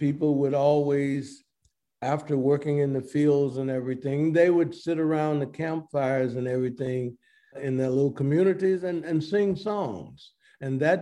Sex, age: male, 60-79